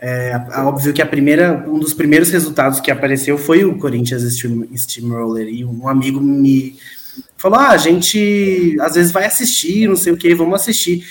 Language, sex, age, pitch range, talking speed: Portuguese, male, 20-39, 125-170 Hz, 180 wpm